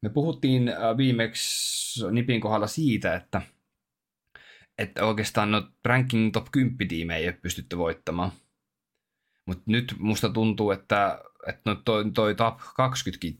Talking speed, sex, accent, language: 130 wpm, male, native, Finnish